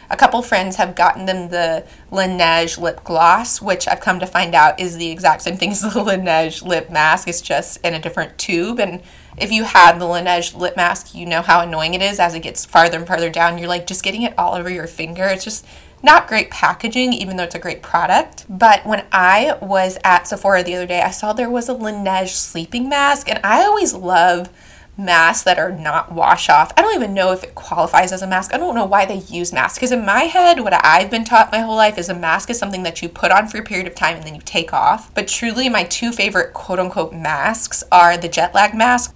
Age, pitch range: 20-39, 175-220 Hz